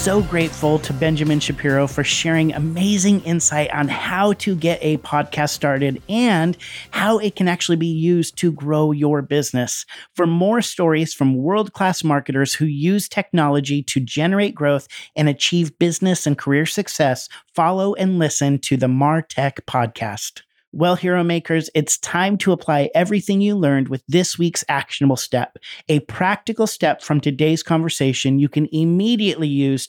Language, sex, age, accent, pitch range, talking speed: English, male, 40-59, American, 140-175 Hz, 155 wpm